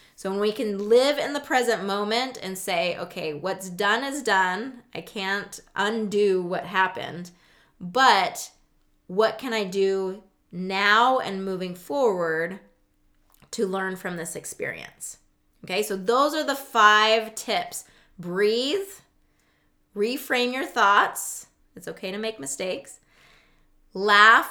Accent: American